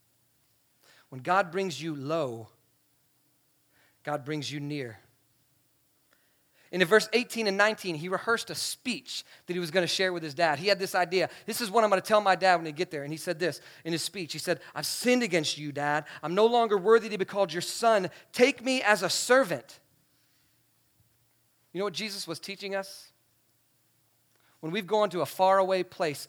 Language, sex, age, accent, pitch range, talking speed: English, male, 30-49, American, 140-195 Hz, 195 wpm